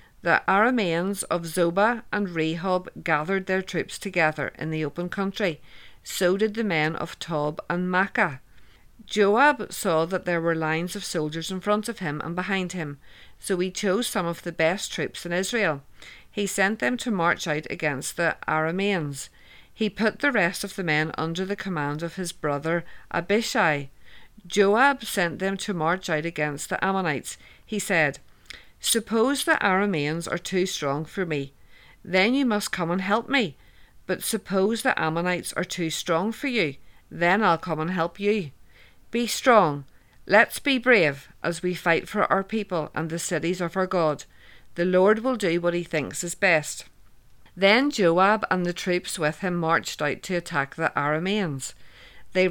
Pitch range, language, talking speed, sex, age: 160-205 Hz, English, 175 wpm, female, 50-69